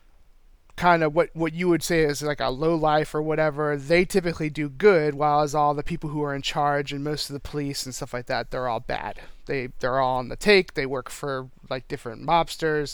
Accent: American